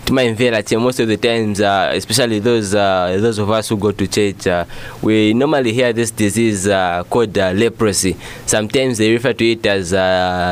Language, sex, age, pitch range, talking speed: English, male, 20-39, 100-115 Hz, 195 wpm